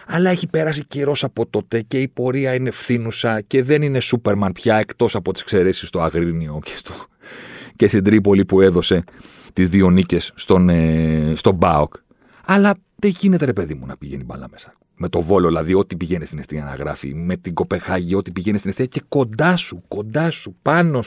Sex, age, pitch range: male, 40-59, 75-125 Hz